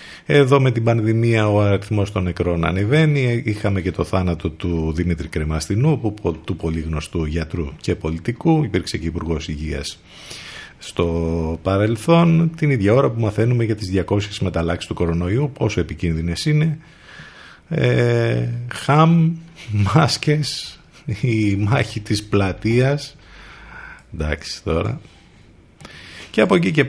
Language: Greek